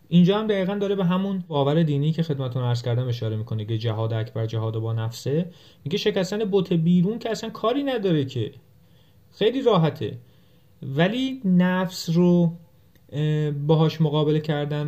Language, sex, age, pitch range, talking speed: Persian, male, 30-49, 125-165 Hz, 155 wpm